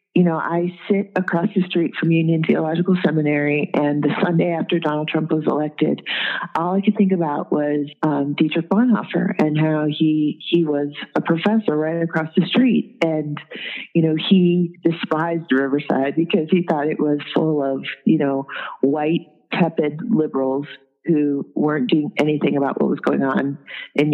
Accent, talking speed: American, 165 wpm